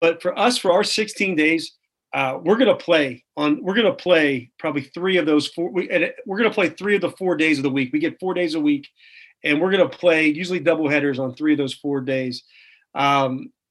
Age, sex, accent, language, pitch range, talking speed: 40-59, male, American, English, 150-190 Hz, 250 wpm